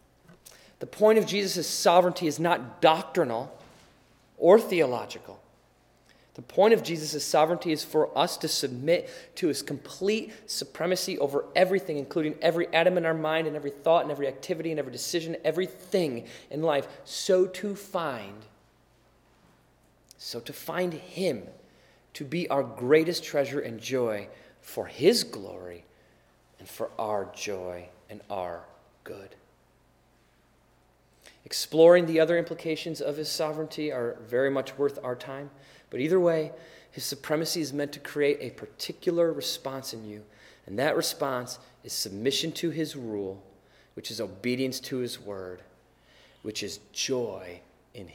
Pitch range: 120-165 Hz